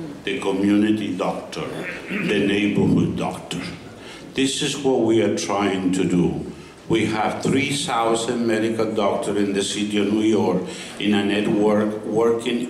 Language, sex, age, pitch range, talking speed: English, male, 60-79, 100-125 Hz, 135 wpm